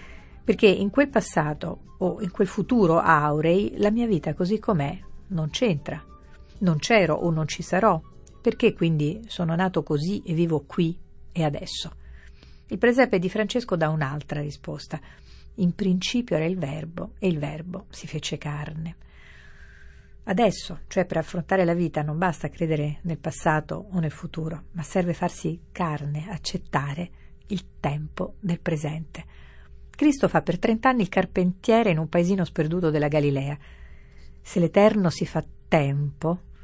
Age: 50-69